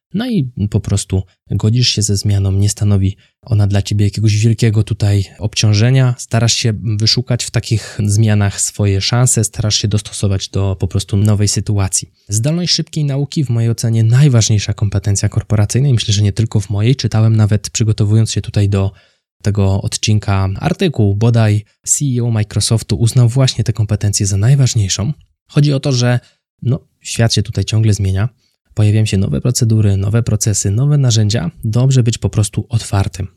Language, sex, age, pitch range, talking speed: Polish, male, 20-39, 100-115 Hz, 160 wpm